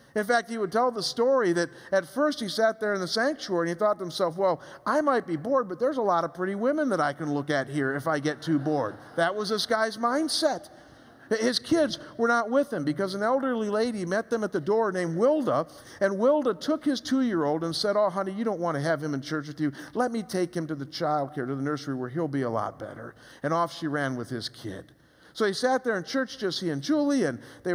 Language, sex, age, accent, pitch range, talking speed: English, male, 50-69, American, 155-235 Hz, 260 wpm